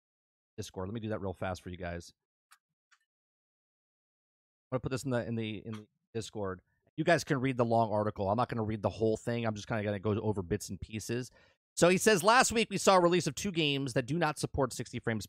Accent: American